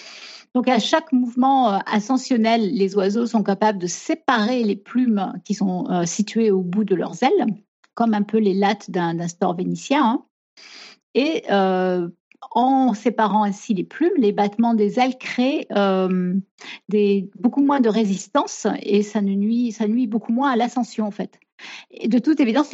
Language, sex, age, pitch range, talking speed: French, female, 50-69, 200-255 Hz, 170 wpm